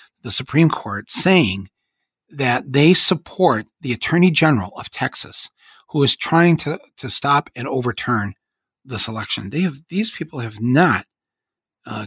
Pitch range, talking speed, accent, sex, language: 115-165 Hz, 145 wpm, American, male, English